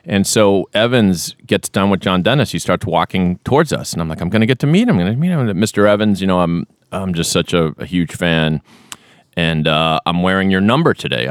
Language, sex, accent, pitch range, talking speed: English, male, American, 85-130 Hz, 255 wpm